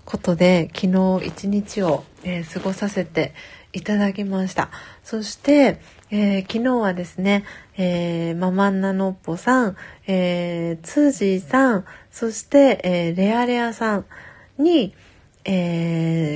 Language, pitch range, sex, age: Japanese, 180-210 Hz, female, 40-59